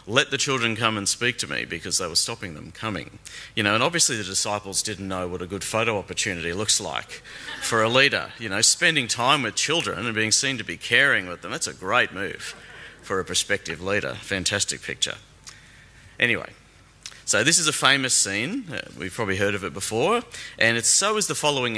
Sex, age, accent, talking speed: male, 40-59, Australian, 205 wpm